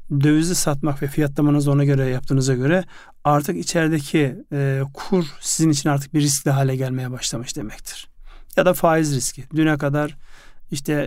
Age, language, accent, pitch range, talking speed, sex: 40-59, Turkish, native, 140-160 Hz, 145 wpm, male